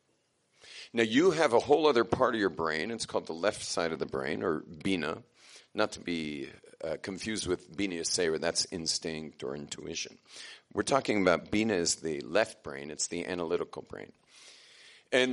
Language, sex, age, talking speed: English, male, 40-59, 185 wpm